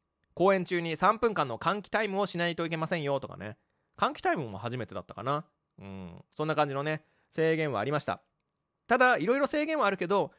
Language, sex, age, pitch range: Japanese, male, 20-39, 110-185 Hz